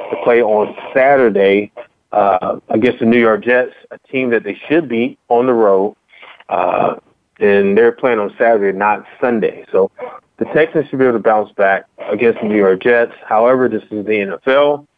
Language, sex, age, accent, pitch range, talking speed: English, male, 30-49, American, 105-125 Hz, 185 wpm